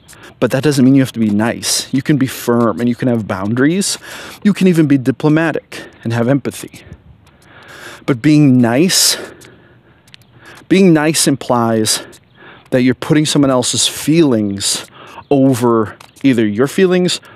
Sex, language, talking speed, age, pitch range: male, English, 145 wpm, 30-49, 115-135 Hz